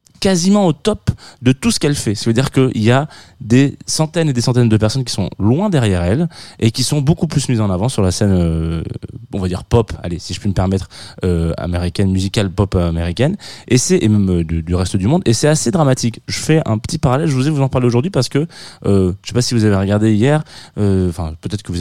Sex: male